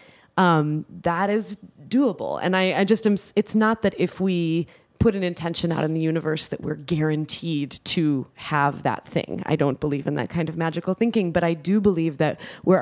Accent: American